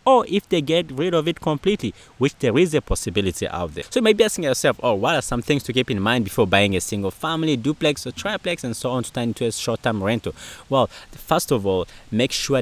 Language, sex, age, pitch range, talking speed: English, male, 30-49, 95-135 Hz, 250 wpm